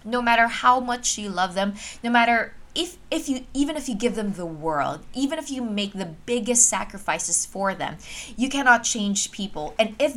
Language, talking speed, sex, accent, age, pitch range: English, 200 wpm, female, Filipino, 20-39, 185-240 Hz